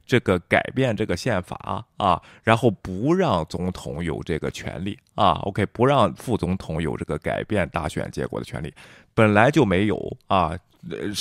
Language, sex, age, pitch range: Chinese, male, 20-39, 95-125 Hz